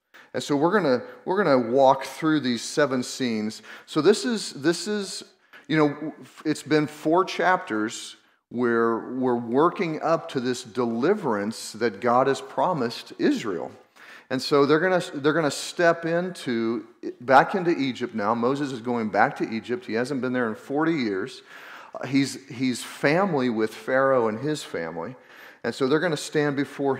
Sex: male